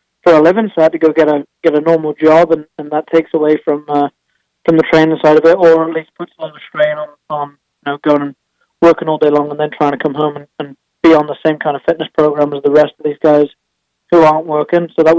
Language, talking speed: English, 285 wpm